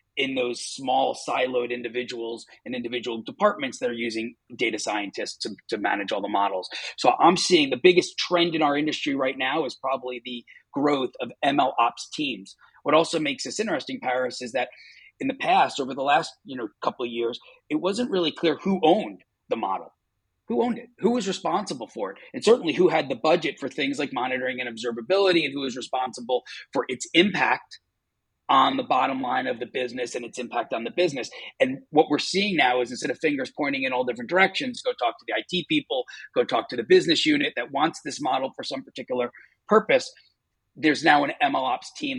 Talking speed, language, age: 205 wpm, English, 30-49